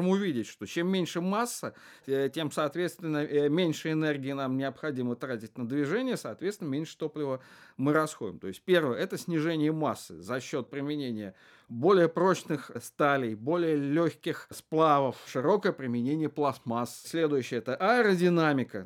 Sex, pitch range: male, 120-155 Hz